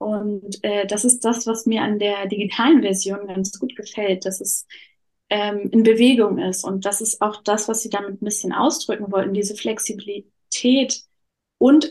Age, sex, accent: 20-39, female, German